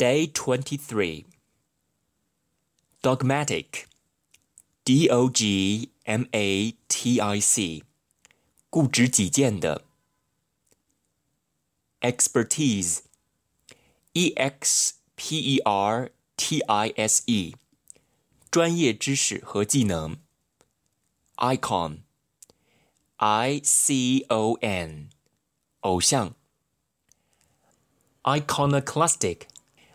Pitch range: 105-135 Hz